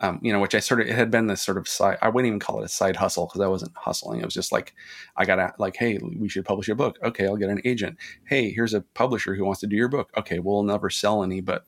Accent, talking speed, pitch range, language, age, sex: American, 310 wpm, 95-115 Hz, English, 30-49, male